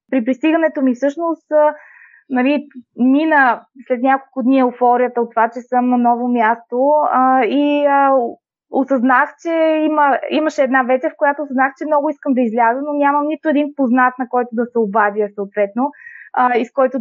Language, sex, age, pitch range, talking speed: Bulgarian, female, 20-39, 235-285 Hz, 160 wpm